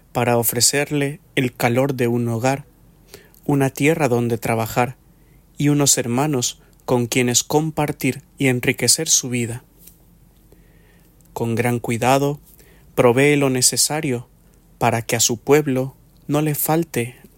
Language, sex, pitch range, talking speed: English, male, 120-145 Hz, 120 wpm